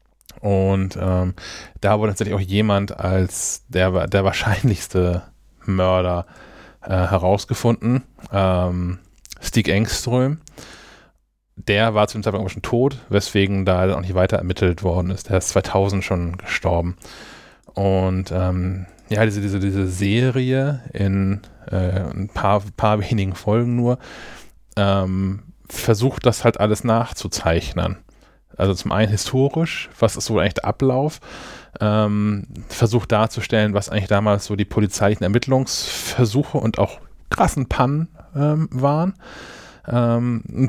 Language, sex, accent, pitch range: German, male, German, 95-115 Hz